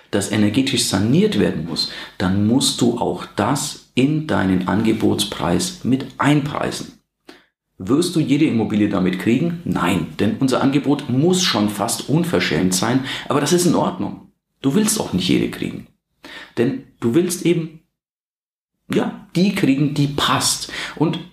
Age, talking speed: 40-59, 145 wpm